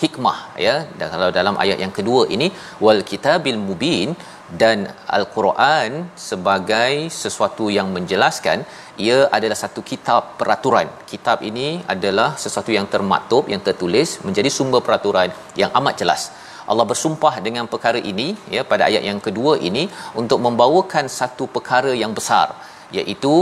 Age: 40-59